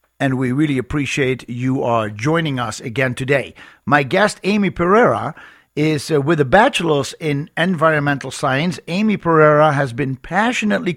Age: 50-69